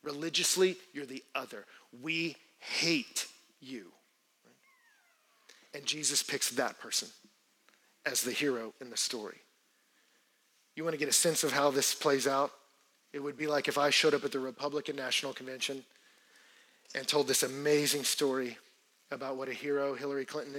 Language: English